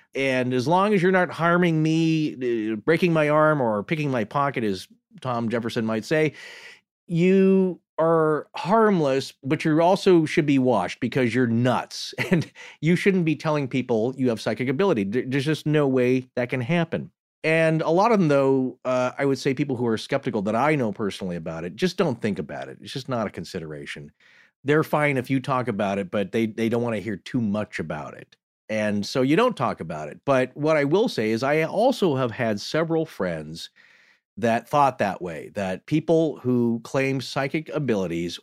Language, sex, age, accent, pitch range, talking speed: English, male, 40-59, American, 115-160 Hz, 195 wpm